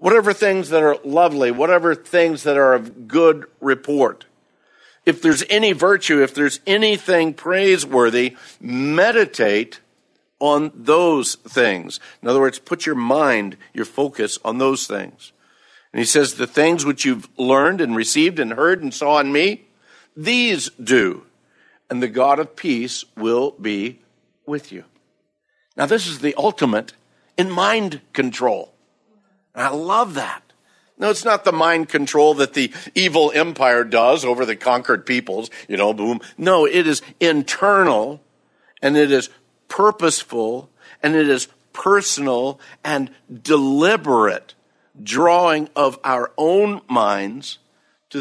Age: 60-79